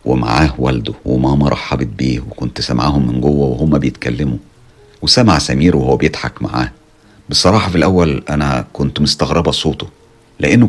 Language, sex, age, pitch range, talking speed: Arabic, male, 50-69, 65-90 Hz, 135 wpm